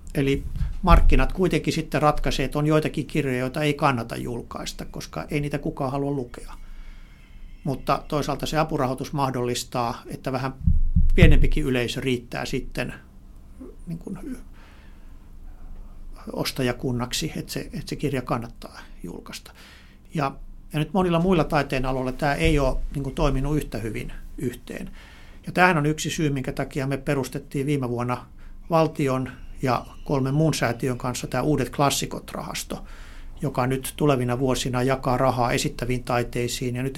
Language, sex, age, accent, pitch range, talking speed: Finnish, male, 60-79, native, 115-145 Hz, 135 wpm